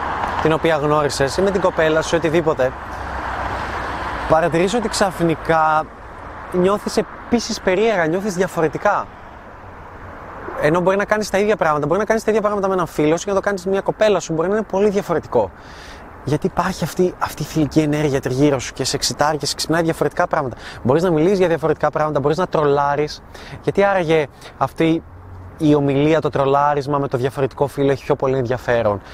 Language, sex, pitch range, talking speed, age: Greek, male, 140-185 Hz, 180 wpm, 20-39